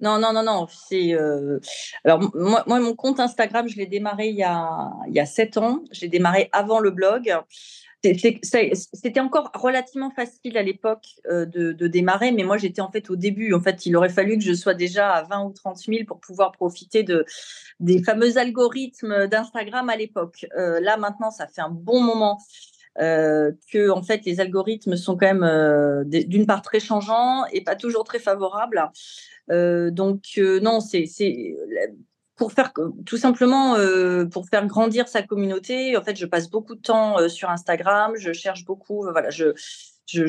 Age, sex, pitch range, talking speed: 30-49, female, 180-225 Hz, 190 wpm